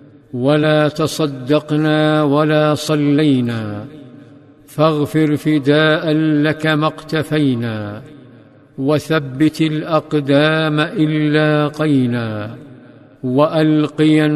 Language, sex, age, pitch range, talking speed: Arabic, male, 50-69, 140-150 Hz, 60 wpm